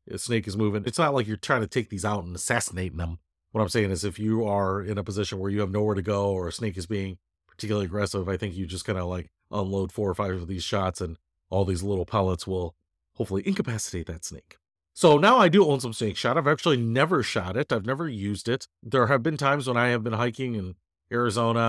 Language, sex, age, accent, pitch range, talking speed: English, male, 40-59, American, 95-130 Hz, 250 wpm